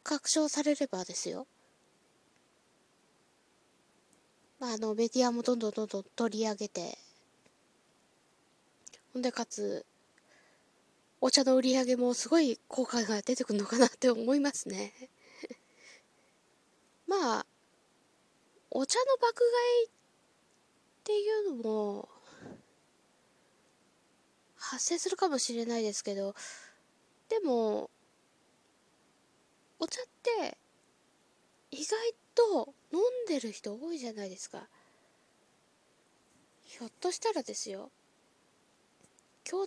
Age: 20-39